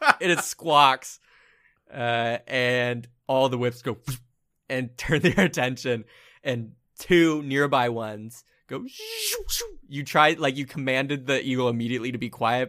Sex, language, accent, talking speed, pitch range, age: male, English, American, 135 wpm, 115-140 Hz, 20-39